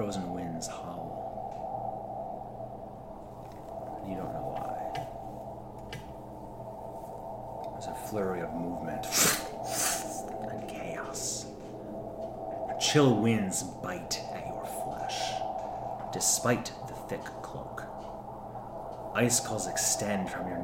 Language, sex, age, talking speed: English, male, 40-59, 90 wpm